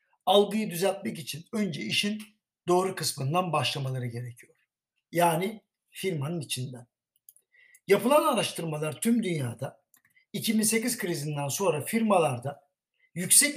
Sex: male